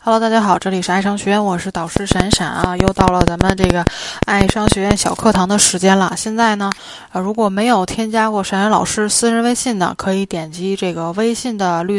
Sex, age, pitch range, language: female, 20-39, 180-225 Hz, Chinese